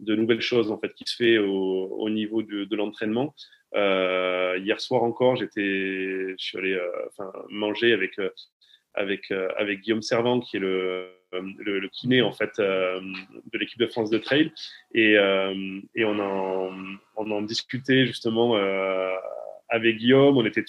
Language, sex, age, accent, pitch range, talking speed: French, male, 20-39, French, 100-125 Hz, 160 wpm